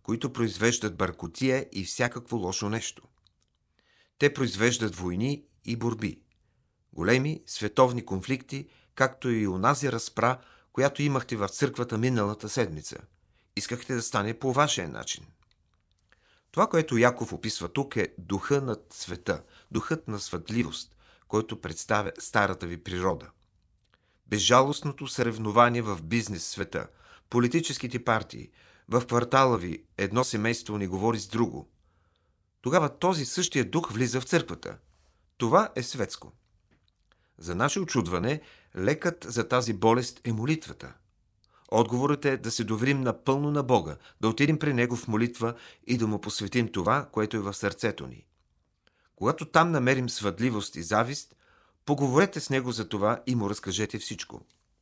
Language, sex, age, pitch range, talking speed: Bulgarian, male, 40-59, 100-130 Hz, 130 wpm